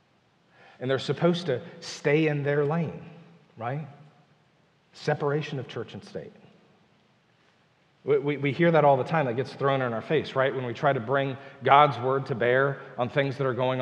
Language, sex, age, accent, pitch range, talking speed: English, male, 40-59, American, 135-190 Hz, 185 wpm